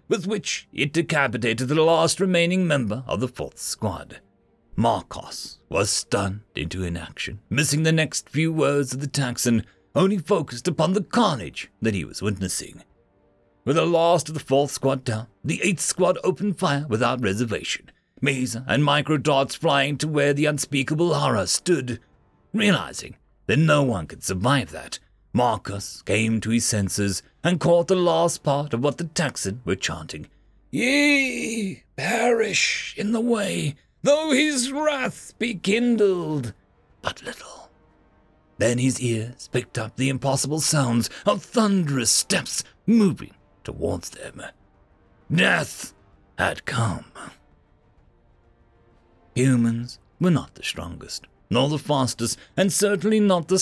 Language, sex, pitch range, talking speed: English, male, 115-180 Hz, 140 wpm